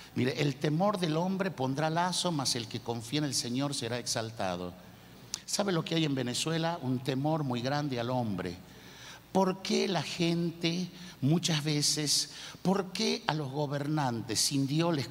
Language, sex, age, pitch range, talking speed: Spanish, male, 50-69, 130-185 Hz, 165 wpm